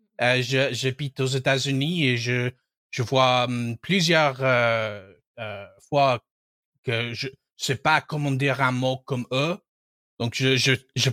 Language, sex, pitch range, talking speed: French, male, 125-155 Hz, 155 wpm